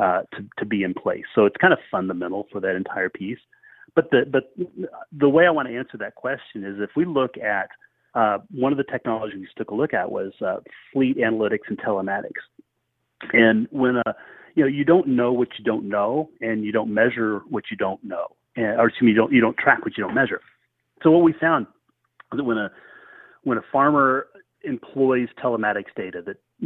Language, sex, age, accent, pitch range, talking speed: English, male, 30-49, American, 110-140 Hz, 220 wpm